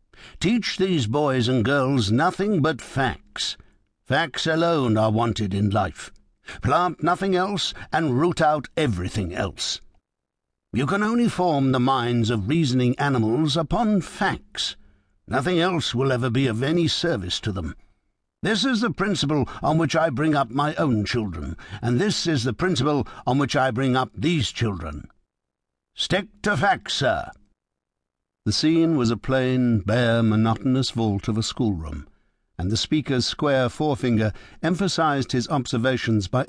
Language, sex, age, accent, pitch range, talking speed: English, male, 60-79, British, 105-150 Hz, 150 wpm